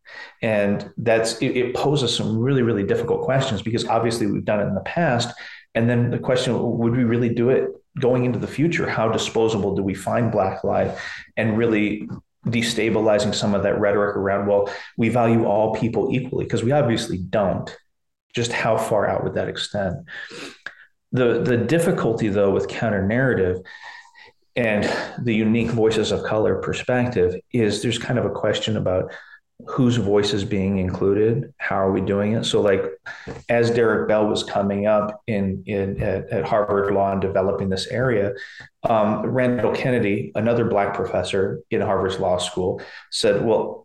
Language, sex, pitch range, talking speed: English, male, 100-125 Hz, 170 wpm